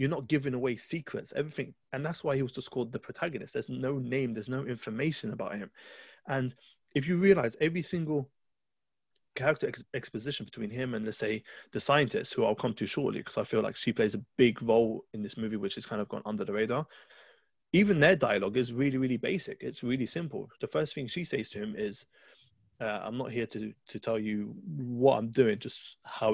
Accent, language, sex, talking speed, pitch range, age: British, English, male, 215 wpm, 115-150 Hz, 20-39